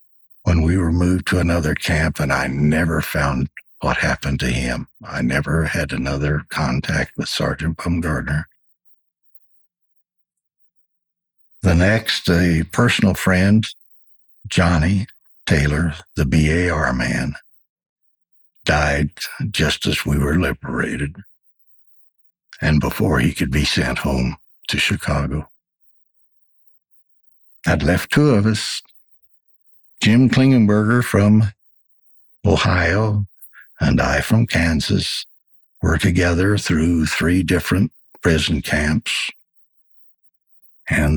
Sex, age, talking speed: male, 60-79, 100 wpm